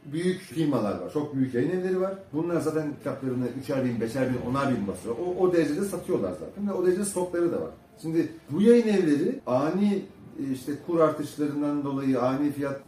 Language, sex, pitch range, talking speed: Turkish, male, 125-185 Hz, 185 wpm